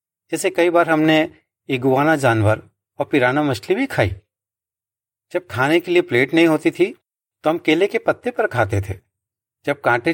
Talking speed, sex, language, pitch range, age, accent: 170 wpm, male, Hindi, 105-160 Hz, 40-59, native